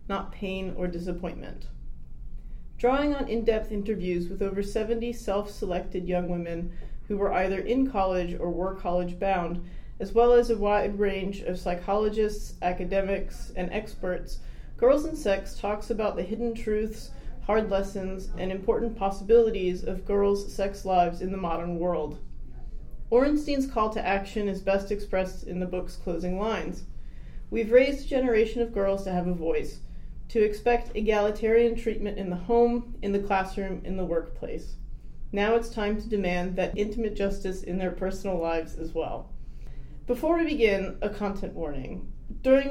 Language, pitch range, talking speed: English, 180-220 Hz, 155 wpm